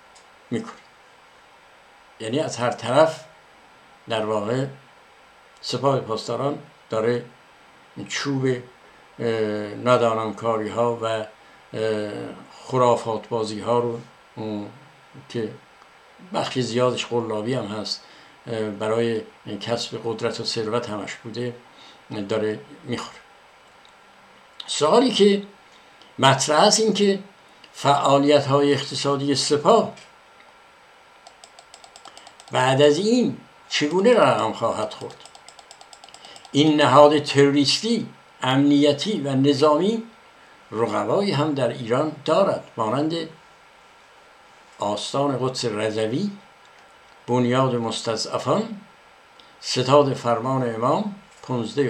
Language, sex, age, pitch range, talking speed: Persian, male, 60-79, 115-150 Hz, 85 wpm